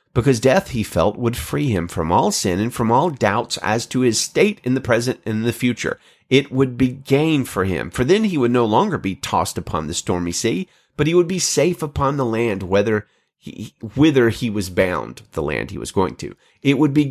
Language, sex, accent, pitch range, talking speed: English, male, American, 110-170 Hz, 230 wpm